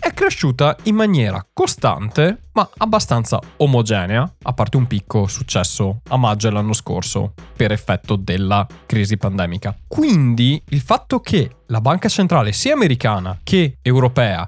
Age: 20-39